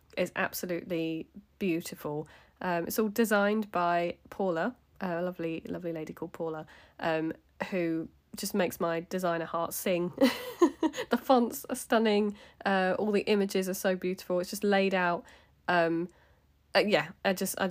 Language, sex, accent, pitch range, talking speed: English, female, British, 165-210 Hz, 150 wpm